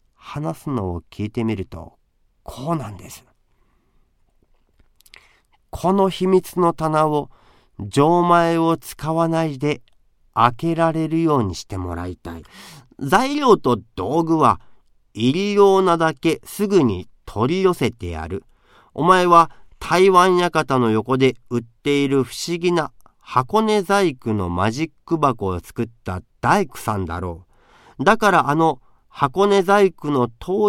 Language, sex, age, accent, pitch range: Japanese, male, 40-59, native, 110-170 Hz